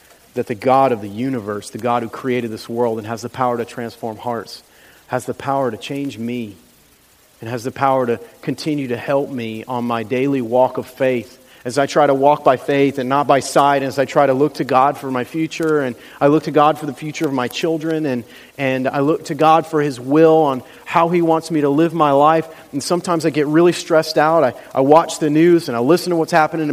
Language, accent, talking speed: English, American, 245 wpm